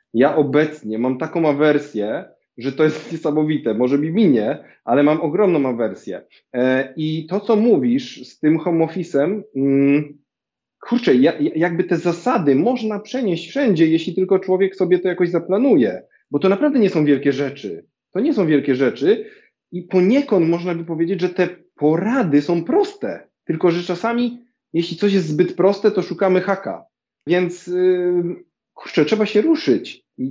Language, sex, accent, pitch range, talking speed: Polish, male, native, 145-195 Hz, 150 wpm